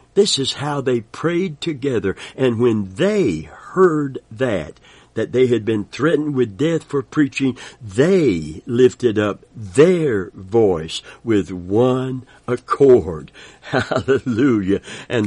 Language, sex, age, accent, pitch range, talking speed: English, male, 60-79, American, 110-145 Hz, 120 wpm